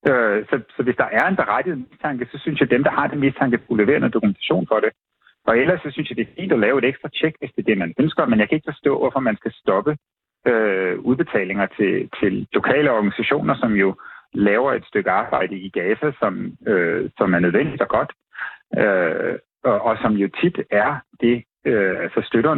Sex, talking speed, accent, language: male, 220 wpm, native, Danish